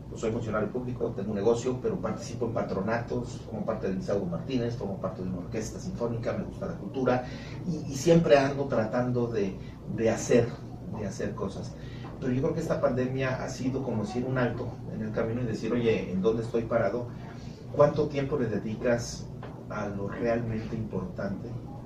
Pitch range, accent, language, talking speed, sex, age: 115-130 Hz, Mexican, Spanish, 185 wpm, male, 40-59